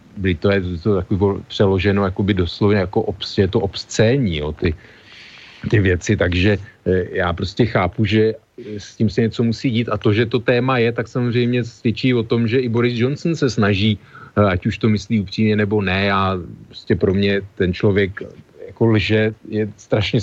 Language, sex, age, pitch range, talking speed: Slovak, male, 40-59, 100-110 Hz, 175 wpm